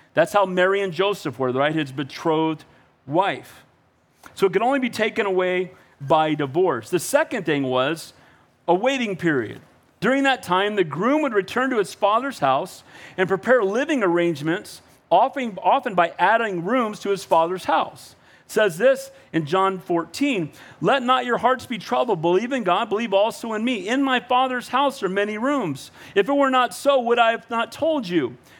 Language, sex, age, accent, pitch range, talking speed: English, male, 40-59, American, 175-255 Hz, 180 wpm